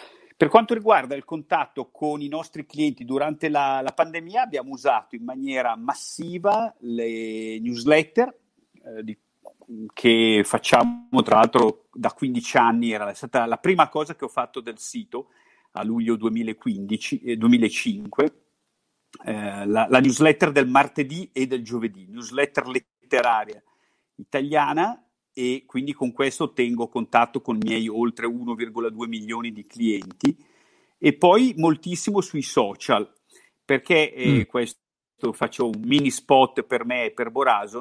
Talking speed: 135 wpm